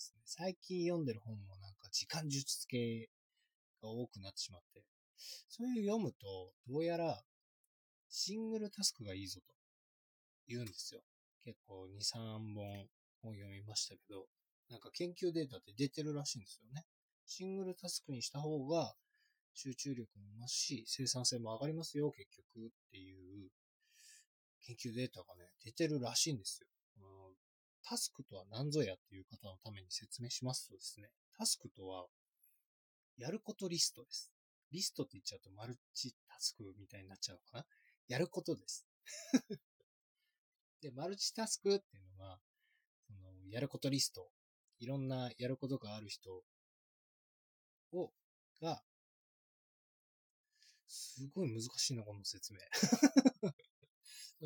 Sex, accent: male, native